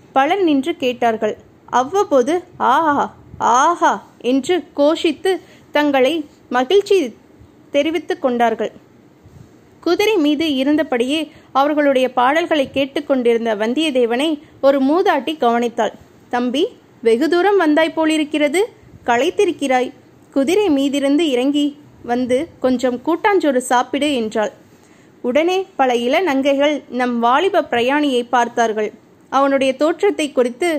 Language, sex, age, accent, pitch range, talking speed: Tamil, female, 20-39, native, 250-330 Hz, 85 wpm